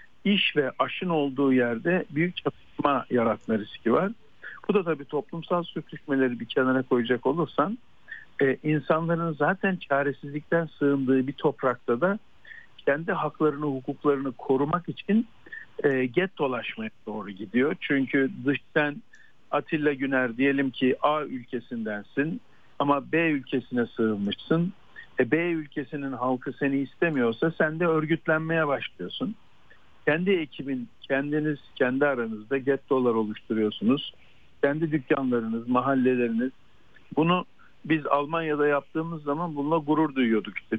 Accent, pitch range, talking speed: native, 120-155 Hz, 110 wpm